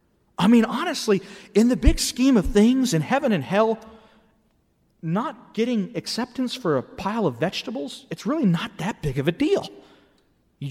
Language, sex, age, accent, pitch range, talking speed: English, male, 40-59, American, 215-300 Hz, 170 wpm